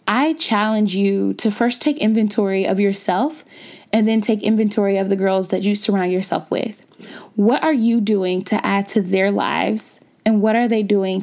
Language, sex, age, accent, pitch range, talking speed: English, female, 20-39, American, 200-245 Hz, 185 wpm